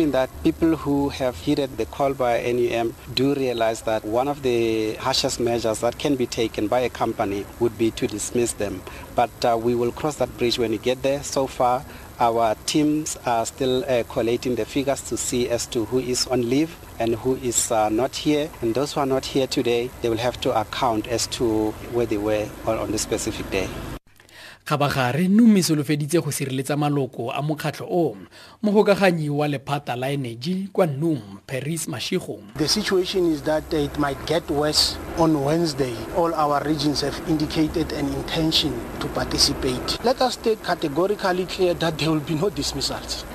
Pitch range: 120-175 Hz